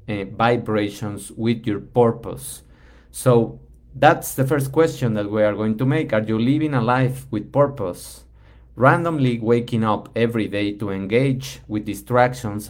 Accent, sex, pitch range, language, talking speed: Mexican, male, 105-130 Hz, English, 145 wpm